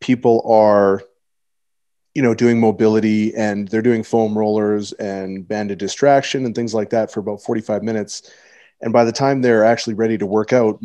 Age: 30-49